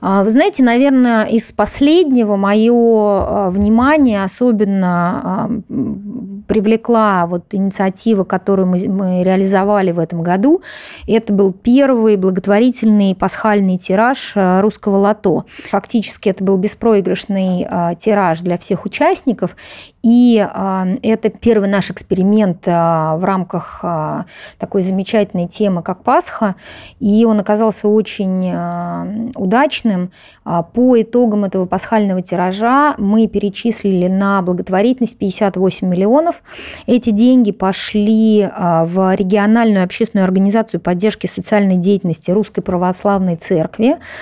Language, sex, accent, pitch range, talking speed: Russian, female, native, 185-225 Hz, 100 wpm